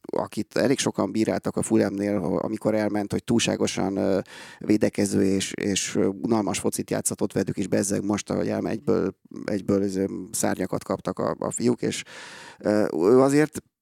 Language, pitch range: Hungarian, 100-115 Hz